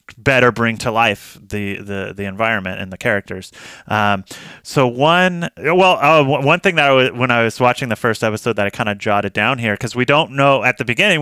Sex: male